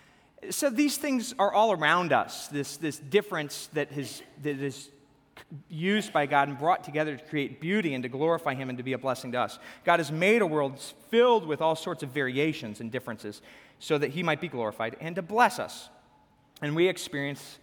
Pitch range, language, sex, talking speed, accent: 135-170 Hz, English, male, 205 wpm, American